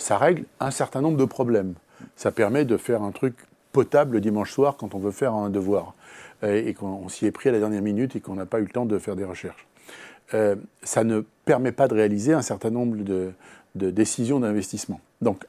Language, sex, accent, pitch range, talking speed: French, male, French, 105-125 Hz, 230 wpm